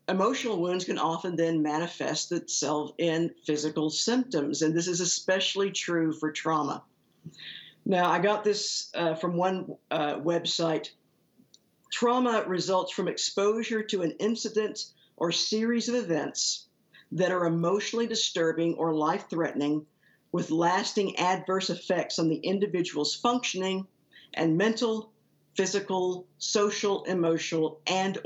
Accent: American